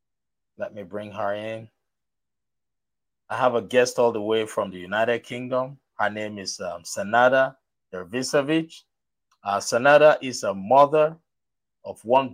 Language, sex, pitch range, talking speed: English, male, 110-135 Hz, 135 wpm